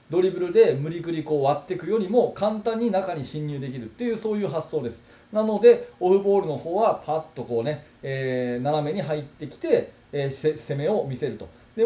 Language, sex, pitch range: Japanese, male, 145-230 Hz